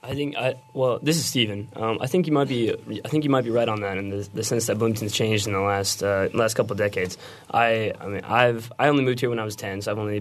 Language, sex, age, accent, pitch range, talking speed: English, male, 20-39, American, 100-120 Hz, 310 wpm